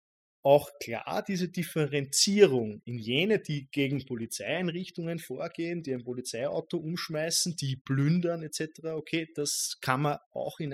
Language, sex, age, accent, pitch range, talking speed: German, male, 20-39, German, 130-160 Hz, 130 wpm